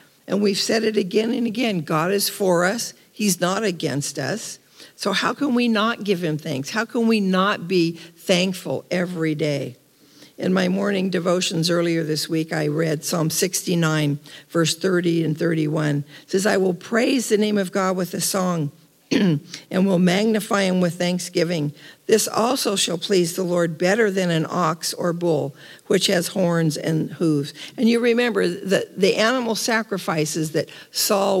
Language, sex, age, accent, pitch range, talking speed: English, female, 50-69, American, 160-195 Hz, 170 wpm